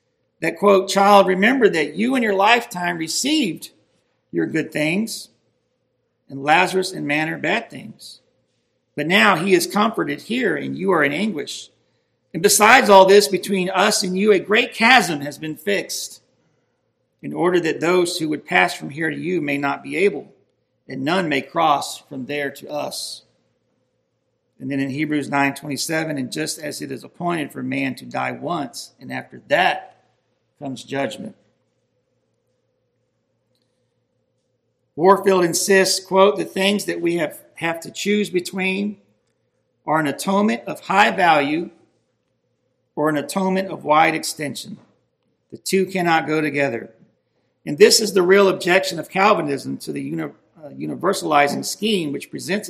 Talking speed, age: 150 wpm, 50-69